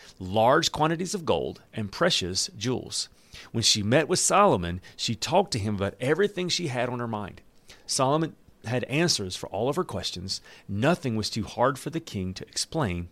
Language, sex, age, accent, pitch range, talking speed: English, male, 40-59, American, 110-160 Hz, 185 wpm